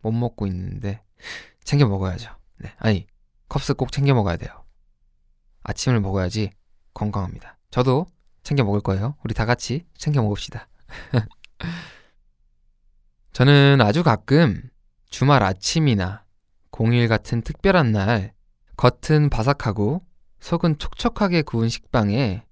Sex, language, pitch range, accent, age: male, Korean, 95-145 Hz, native, 20-39